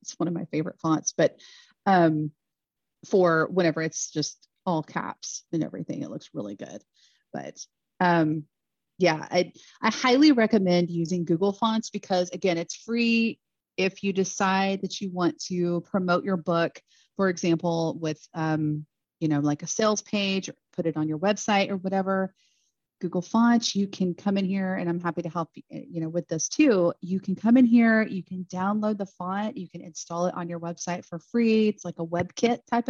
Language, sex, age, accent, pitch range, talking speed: English, female, 30-49, American, 170-205 Hz, 190 wpm